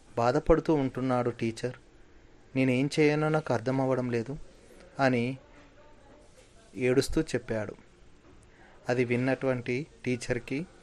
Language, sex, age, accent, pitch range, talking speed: Telugu, male, 30-49, native, 120-155 Hz, 80 wpm